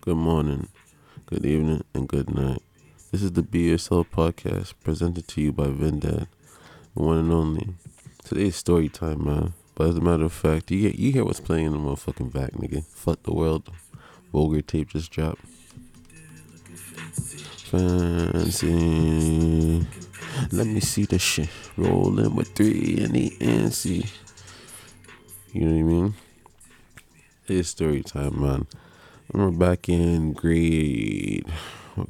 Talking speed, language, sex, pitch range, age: 145 wpm, English, male, 75-95 Hz, 20-39